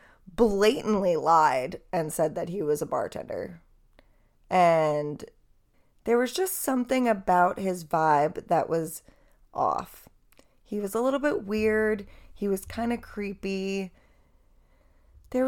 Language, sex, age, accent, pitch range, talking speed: English, female, 20-39, American, 170-220 Hz, 125 wpm